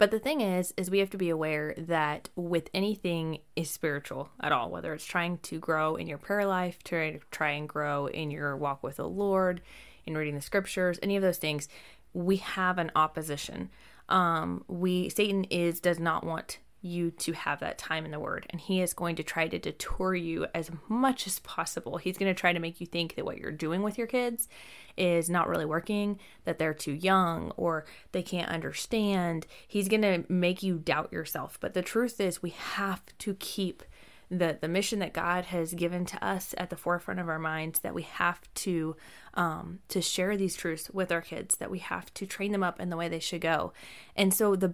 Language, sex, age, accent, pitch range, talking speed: English, female, 20-39, American, 160-190 Hz, 220 wpm